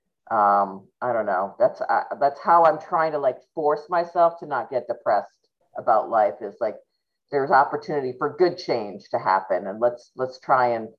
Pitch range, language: 120-170 Hz, English